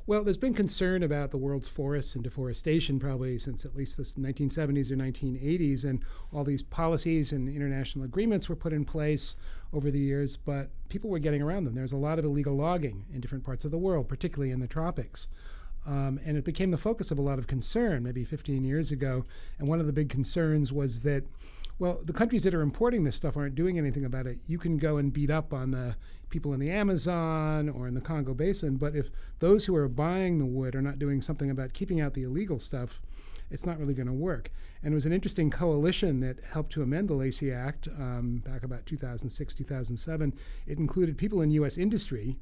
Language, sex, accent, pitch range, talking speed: English, male, American, 130-160 Hz, 220 wpm